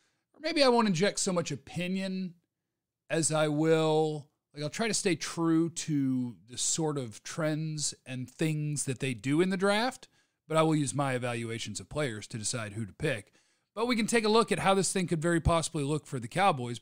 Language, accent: English, American